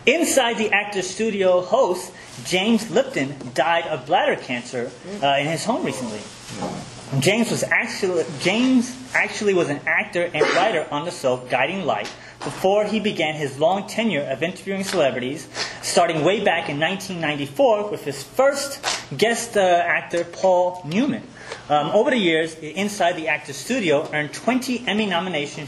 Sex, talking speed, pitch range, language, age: male, 150 wpm, 140-195 Hz, English, 30-49